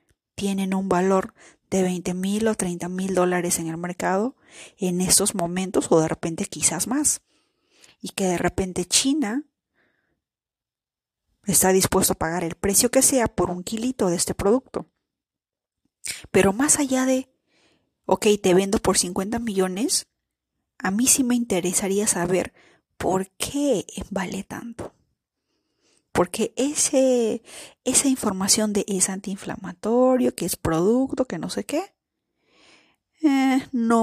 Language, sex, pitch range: Spanish, female, 185-250 Hz